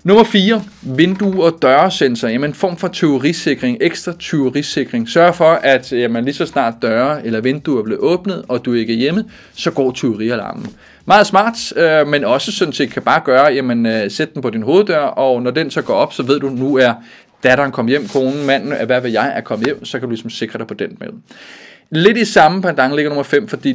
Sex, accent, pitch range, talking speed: male, native, 125-180 Hz, 230 wpm